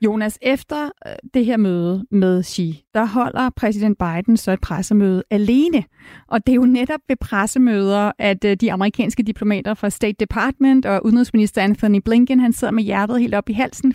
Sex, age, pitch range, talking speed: female, 30-49, 210-260 Hz, 175 wpm